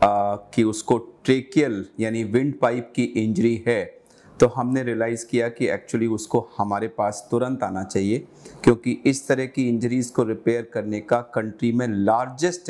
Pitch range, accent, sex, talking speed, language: 110-135 Hz, native, male, 160 wpm, Hindi